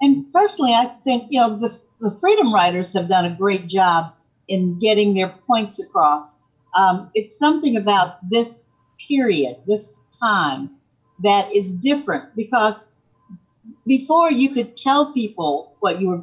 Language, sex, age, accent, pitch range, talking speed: English, female, 50-69, American, 165-240 Hz, 150 wpm